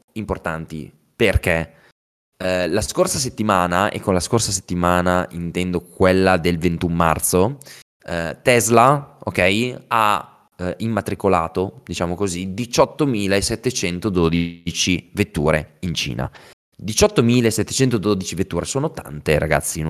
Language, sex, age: Italian, male, 20-39